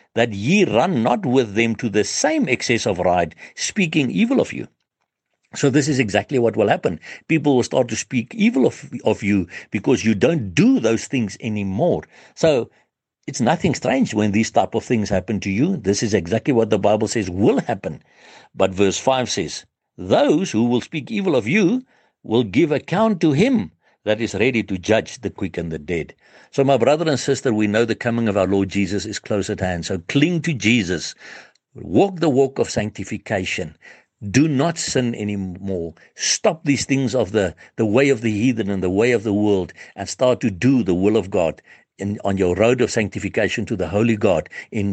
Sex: male